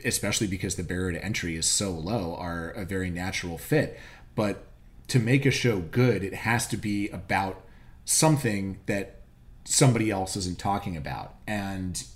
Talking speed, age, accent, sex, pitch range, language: 165 wpm, 30-49, American, male, 85-115 Hz, English